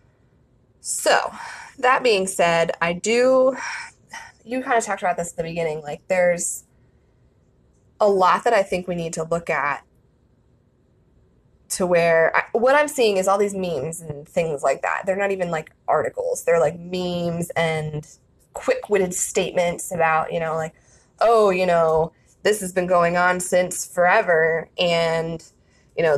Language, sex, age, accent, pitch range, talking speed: English, female, 20-39, American, 165-195 Hz, 155 wpm